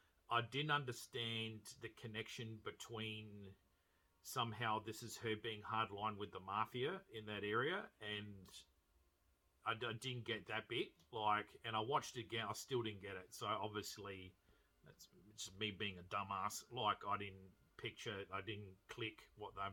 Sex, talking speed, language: male, 165 wpm, English